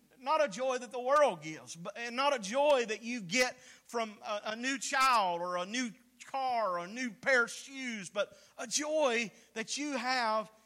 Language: English